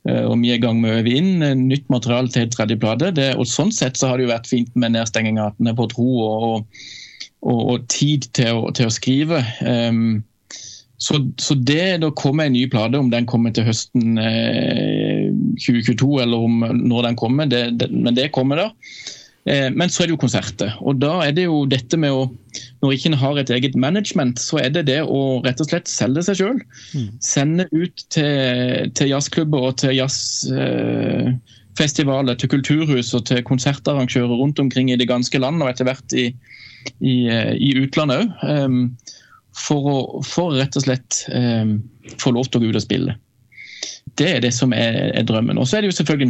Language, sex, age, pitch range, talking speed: English, male, 20-39, 120-140 Hz, 185 wpm